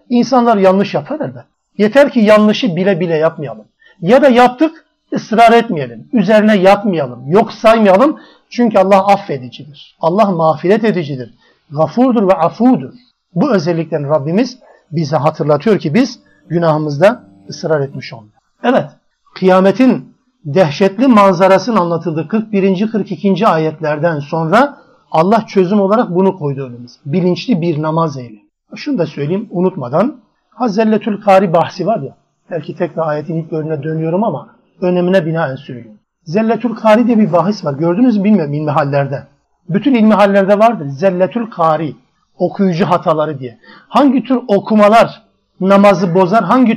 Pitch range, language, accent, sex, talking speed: 160-220 Hz, Turkish, native, male, 130 wpm